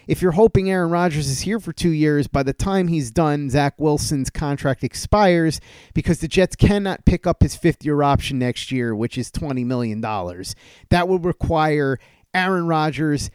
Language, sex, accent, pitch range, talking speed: English, male, American, 130-170 Hz, 175 wpm